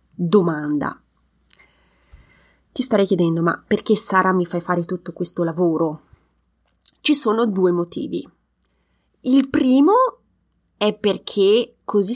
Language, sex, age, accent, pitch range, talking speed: Italian, female, 30-49, native, 180-250 Hz, 110 wpm